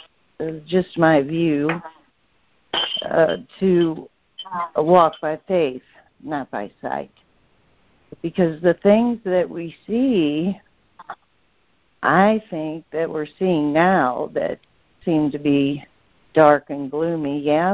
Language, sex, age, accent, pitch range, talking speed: English, female, 60-79, American, 155-195 Hz, 105 wpm